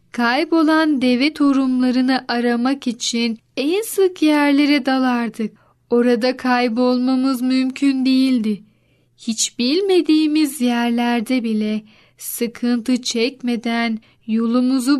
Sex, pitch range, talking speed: female, 235-270 Hz, 80 wpm